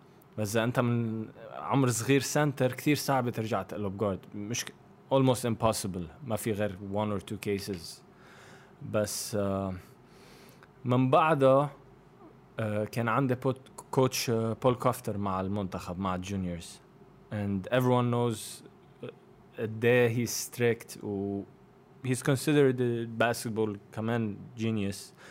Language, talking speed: Arabic, 105 wpm